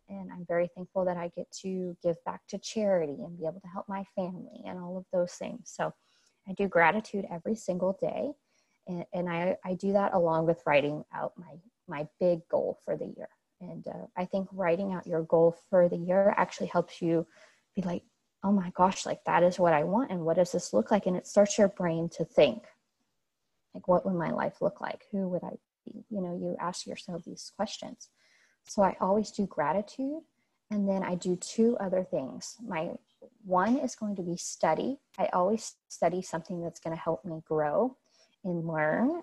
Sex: female